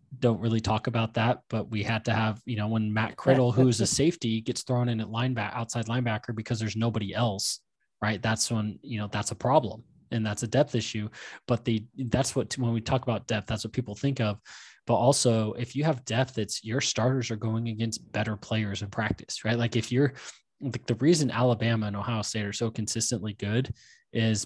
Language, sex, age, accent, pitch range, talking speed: English, male, 20-39, American, 110-125 Hz, 220 wpm